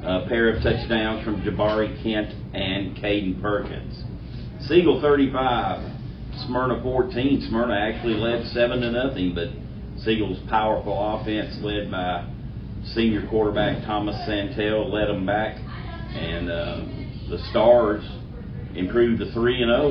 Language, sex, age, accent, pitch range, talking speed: English, male, 40-59, American, 105-125 Hz, 120 wpm